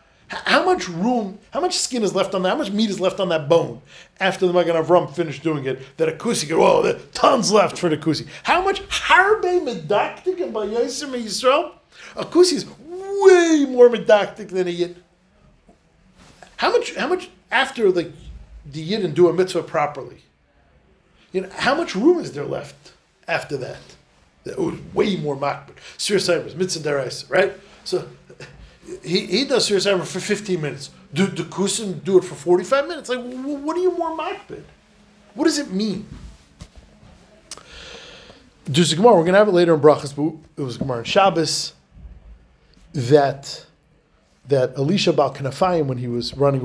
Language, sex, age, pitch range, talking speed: English, male, 40-59, 145-210 Hz, 165 wpm